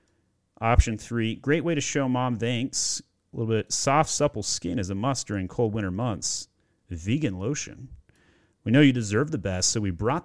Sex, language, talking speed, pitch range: male, English, 185 wpm, 100-140 Hz